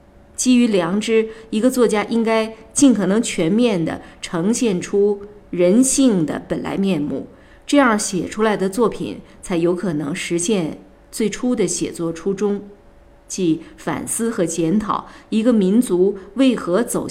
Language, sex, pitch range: Chinese, female, 175-225 Hz